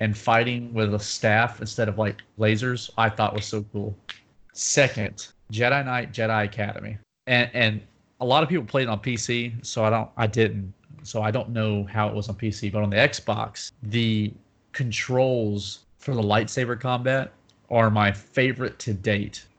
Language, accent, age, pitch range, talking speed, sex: English, American, 30-49, 105-125 Hz, 180 wpm, male